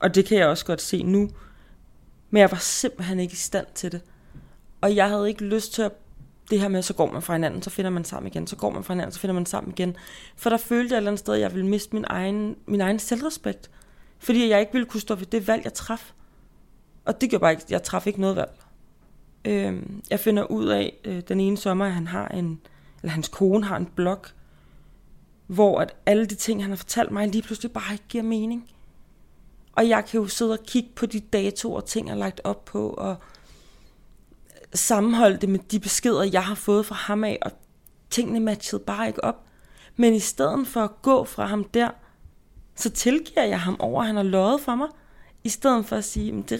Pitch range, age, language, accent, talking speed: 185-225 Hz, 30-49, Danish, native, 235 wpm